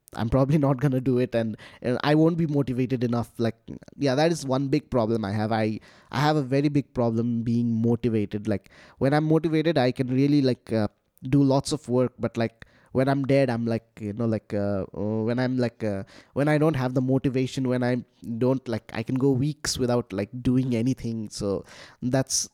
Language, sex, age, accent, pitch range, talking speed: English, male, 20-39, Indian, 115-135 Hz, 215 wpm